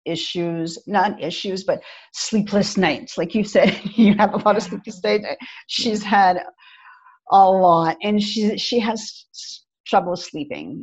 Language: English